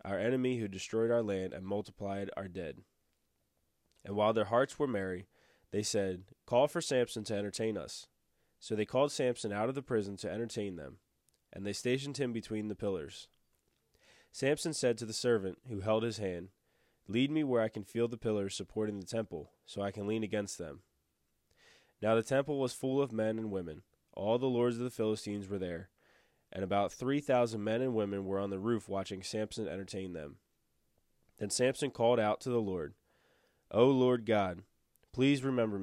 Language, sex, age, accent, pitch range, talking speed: English, male, 20-39, American, 95-120 Hz, 190 wpm